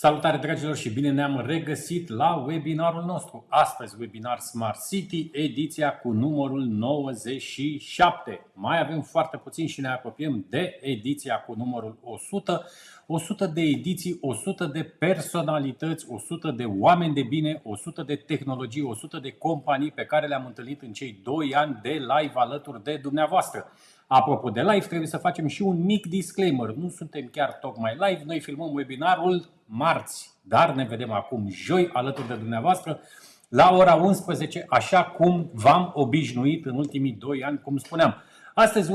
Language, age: Romanian, 30-49